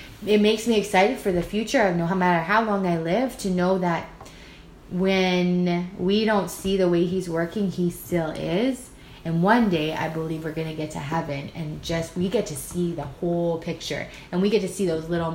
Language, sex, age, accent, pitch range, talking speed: English, female, 20-39, American, 160-215 Hz, 210 wpm